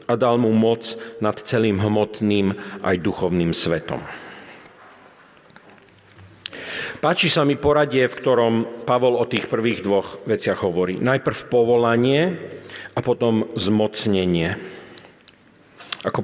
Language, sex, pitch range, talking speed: Slovak, male, 105-140 Hz, 105 wpm